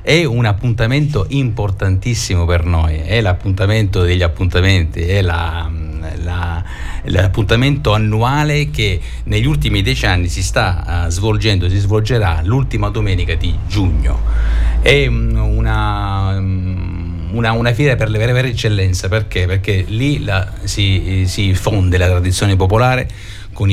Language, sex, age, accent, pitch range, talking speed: Italian, male, 50-69, native, 90-110 Hz, 125 wpm